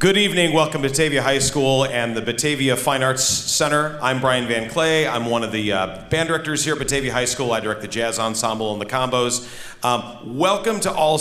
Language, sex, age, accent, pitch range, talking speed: English, male, 40-59, American, 110-150 Hz, 220 wpm